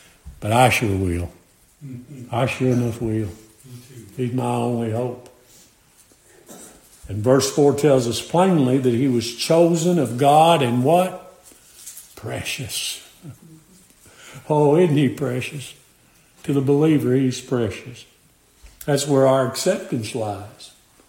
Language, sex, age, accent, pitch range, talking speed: English, male, 60-79, American, 130-185 Hz, 115 wpm